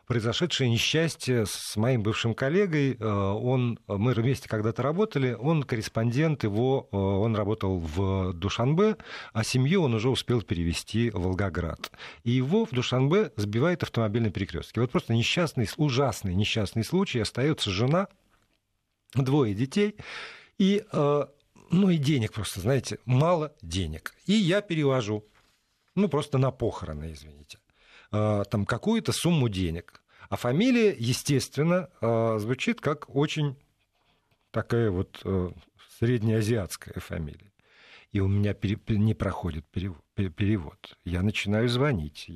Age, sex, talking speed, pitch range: 50-69, male, 115 wpm, 100-140 Hz